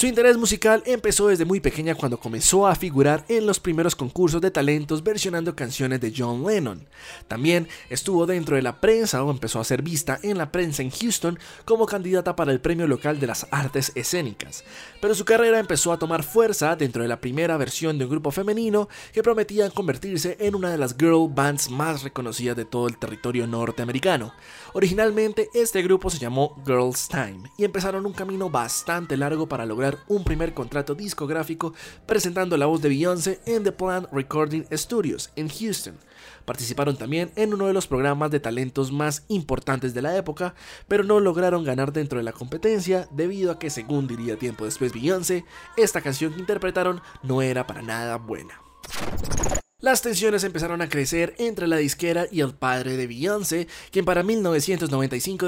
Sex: male